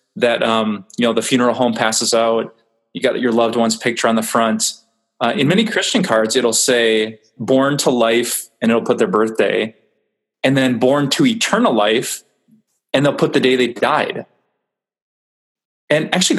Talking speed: 175 wpm